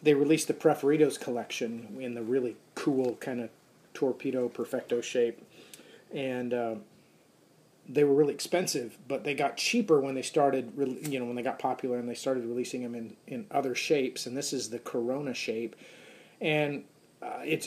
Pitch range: 125-155 Hz